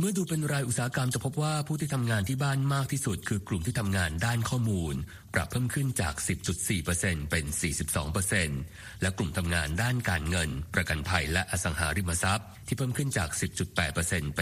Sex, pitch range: male, 85-120 Hz